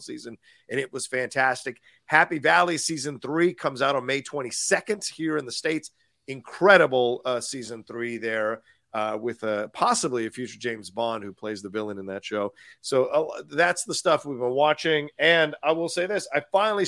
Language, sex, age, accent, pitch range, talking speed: English, male, 40-59, American, 125-200 Hz, 190 wpm